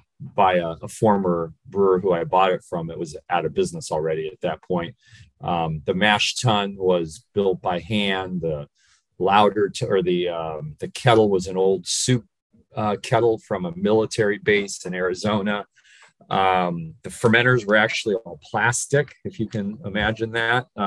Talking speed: 170 wpm